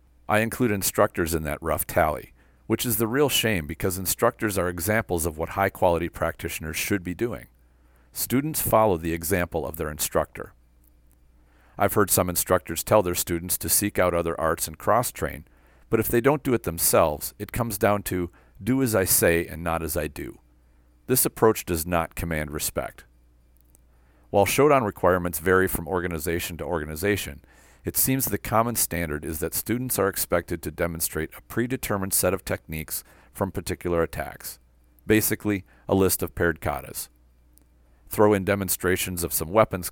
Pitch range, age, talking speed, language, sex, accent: 75-105 Hz, 50-69, 165 wpm, English, male, American